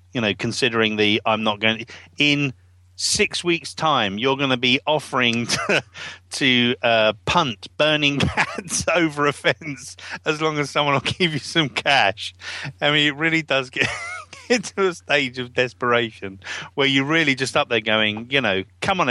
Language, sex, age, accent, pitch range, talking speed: English, male, 40-59, British, 105-145 Hz, 180 wpm